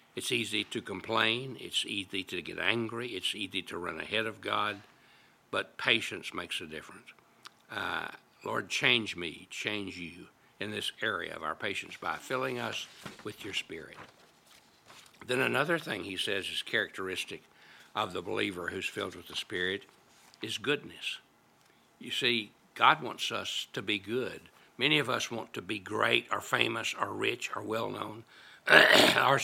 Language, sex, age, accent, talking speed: English, male, 60-79, American, 160 wpm